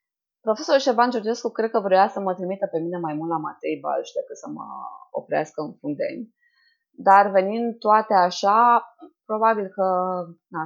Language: Romanian